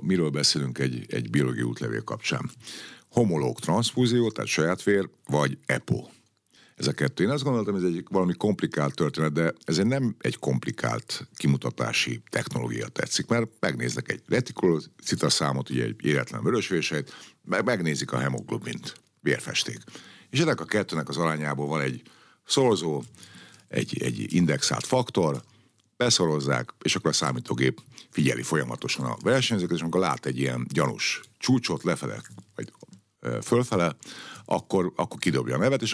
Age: 50-69